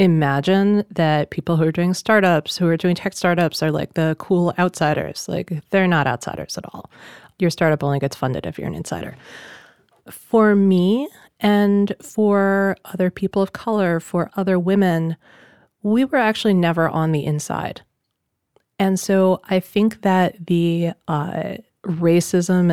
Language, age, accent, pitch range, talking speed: English, 30-49, American, 165-200 Hz, 155 wpm